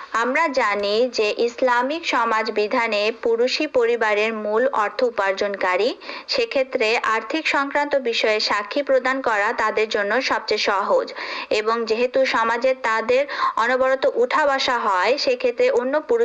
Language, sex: Urdu, female